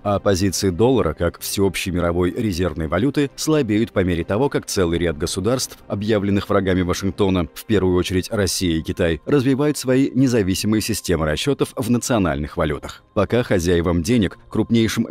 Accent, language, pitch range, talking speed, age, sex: native, Russian, 90-120 Hz, 145 wpm, 30-49, male